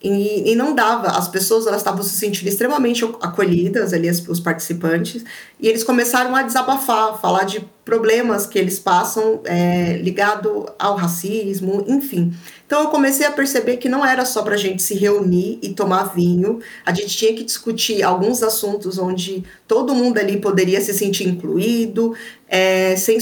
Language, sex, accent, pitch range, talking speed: Portuguese, female, Brazilian, 185-225 Hz, 170 wpm